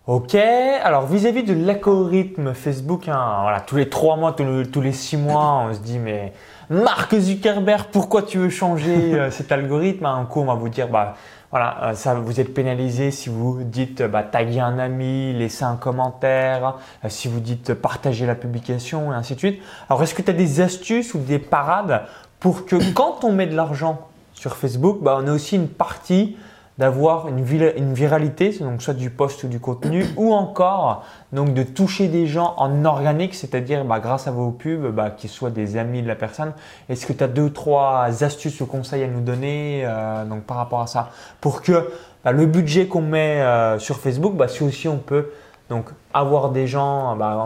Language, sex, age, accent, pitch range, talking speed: French, male, 20-39, French, 125-165 Hz, 200 wpm